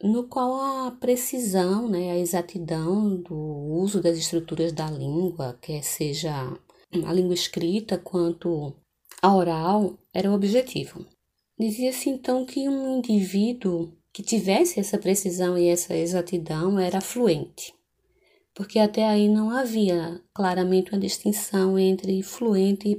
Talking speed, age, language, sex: 130 wpm, 20-39, Portuguese, female